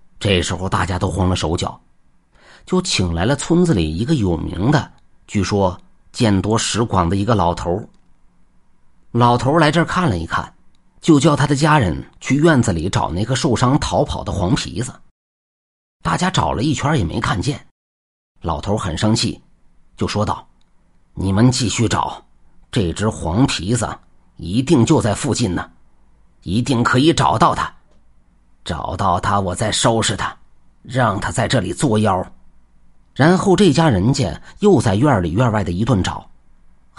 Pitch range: 90-145 Hz